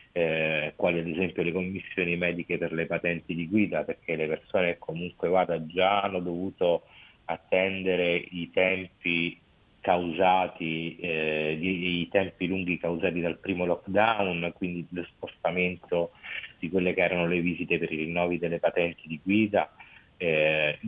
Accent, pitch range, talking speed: native, 85-95 Hz, 140 wpm